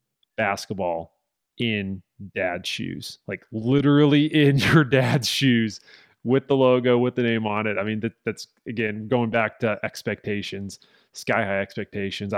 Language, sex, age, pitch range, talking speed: English, male, 30-49, 105-125 Hz, 145 wpm